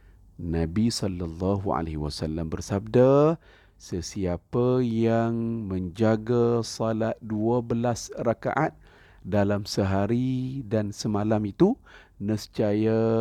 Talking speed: 75 wpm